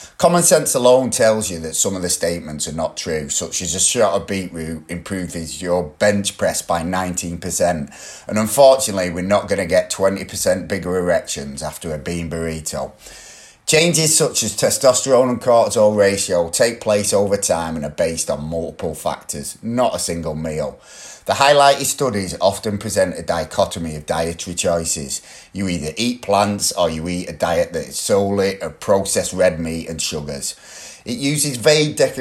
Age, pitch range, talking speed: 30-49, 85-105 Hz, 170 wpm